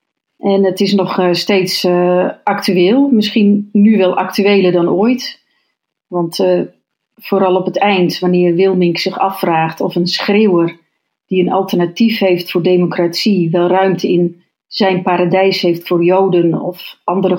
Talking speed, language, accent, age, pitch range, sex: 145 wpm, Dutch, Dutch, 40-59, 175-200 Hz, female